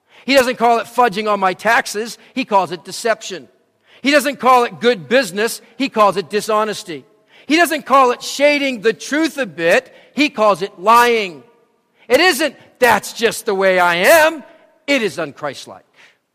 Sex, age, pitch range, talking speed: male, 50-69, 155-225 Hz, 170 wpm